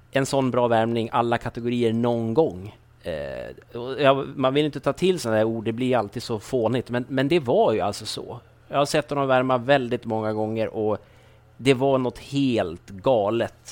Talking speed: 195 wpm